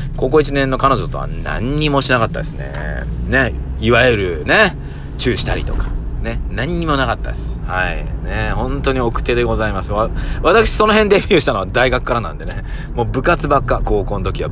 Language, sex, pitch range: Japanese, male, 110-150 Hz